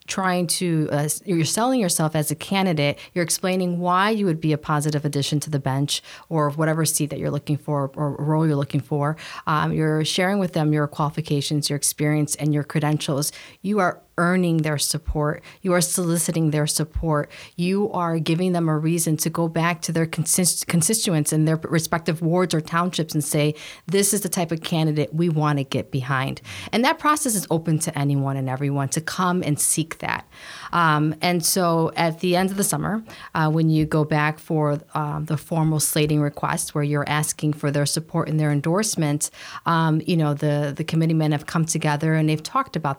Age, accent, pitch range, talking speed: 40-59, American, 150-170 Hz, 200 wpm